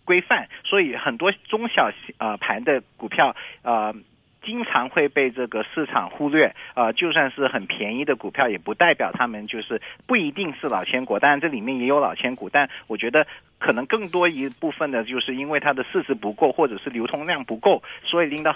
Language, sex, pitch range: Chinese, male, 115-155 Hz